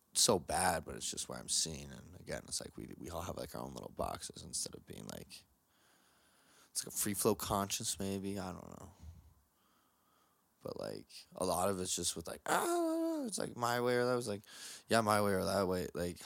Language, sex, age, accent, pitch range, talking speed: English, male, 20-39, American, 85-105 Hz, 220 wpm